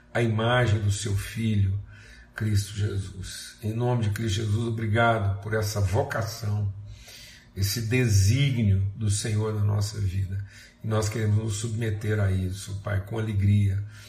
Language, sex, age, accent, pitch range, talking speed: Portuguese, male, 50-69, Brazilian, 105-125 Hz, 140 wpm